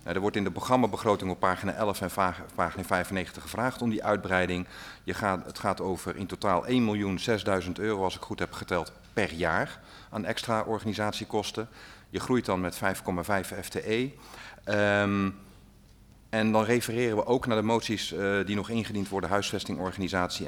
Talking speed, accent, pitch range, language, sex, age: 160 wpm, Belgian, 95-110 Hz, Dutch, male, 40-59